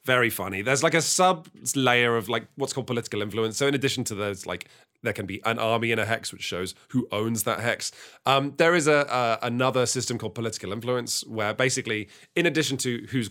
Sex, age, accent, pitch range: male, 30-49, British, 110-150 Hz